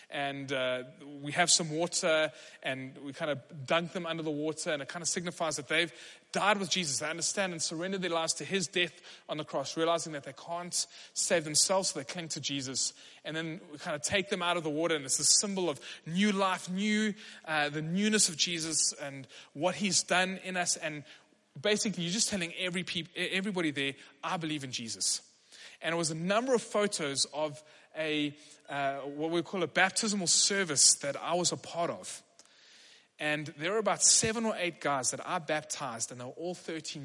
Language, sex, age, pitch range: English, male, 20-39, 145-180 Hz